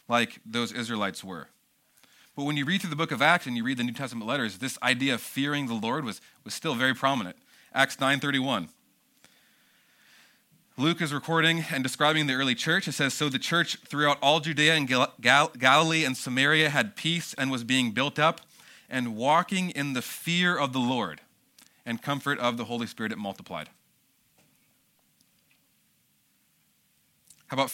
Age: 30-49